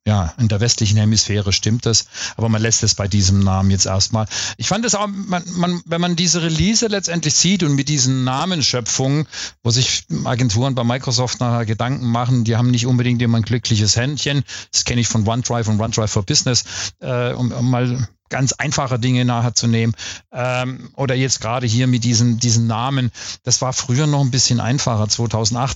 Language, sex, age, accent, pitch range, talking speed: English, male, 40-59, German, 115-135 Hz, 190 wpm